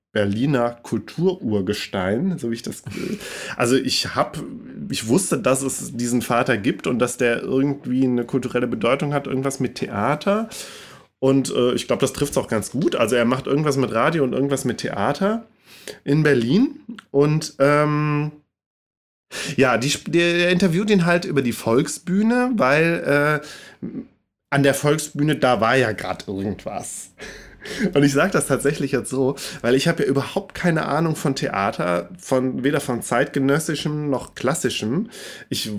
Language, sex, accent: German, male, German